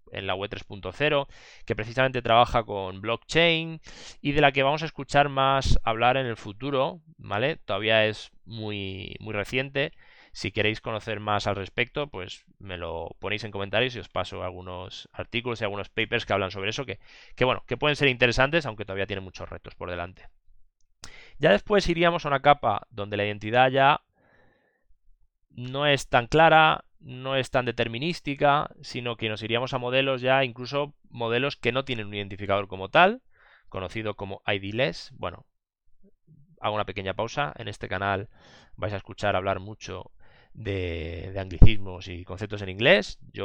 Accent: Spanish